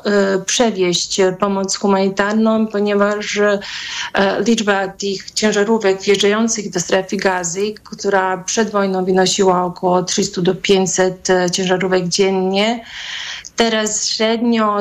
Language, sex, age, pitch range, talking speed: Polish, female, 30-49, 190-215 Hz, 95 wpm